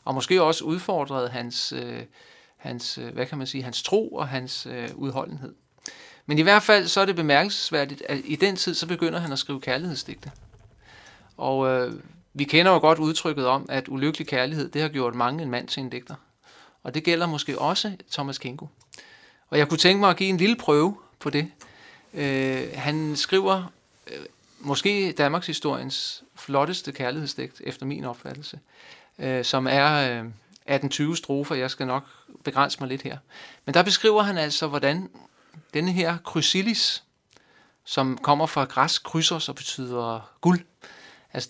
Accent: native